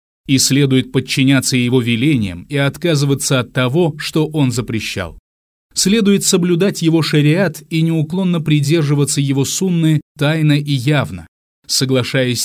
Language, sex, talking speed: Russian, male, 120 wpm